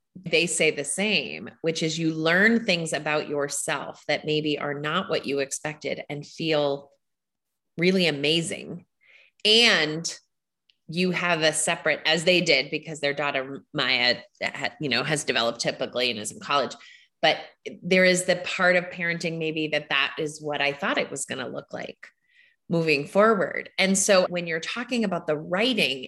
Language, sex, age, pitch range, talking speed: English, female, 30-49, 150-195 Hz, 175 wpm